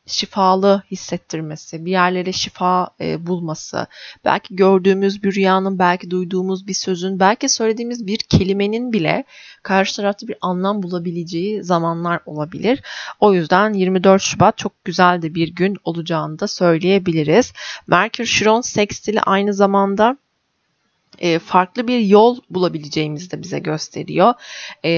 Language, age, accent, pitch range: Turkish, 30-49, native, 170-200 Hz